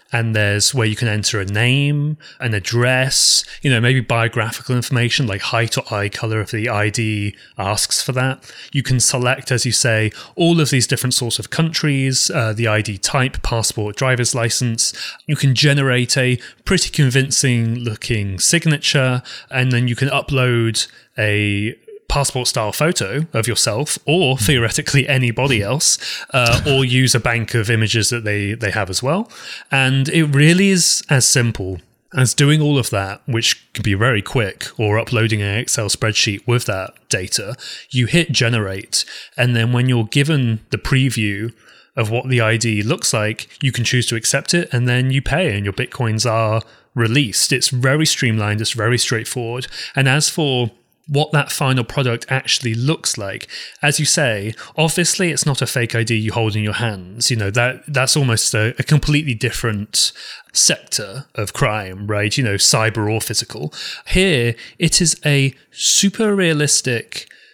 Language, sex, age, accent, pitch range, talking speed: English, male, 30-49, British, 110-140 Hz, 170 wpm